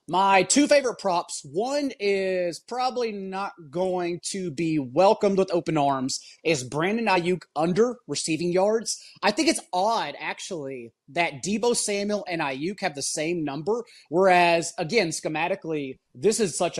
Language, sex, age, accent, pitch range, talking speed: English, male, 30-49, American, 155-205 Hz, 145 wpm